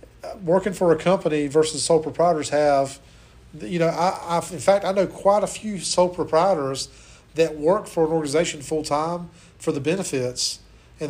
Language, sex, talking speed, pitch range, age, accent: English, male, 170 wpm, 140-170 Hz, 40-59, American